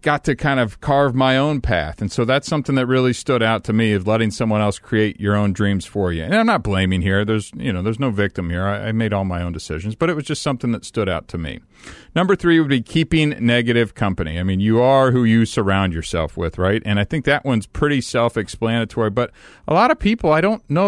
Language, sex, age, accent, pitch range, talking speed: English, male, 40-59, American, 100-140 Hz, 255 wpm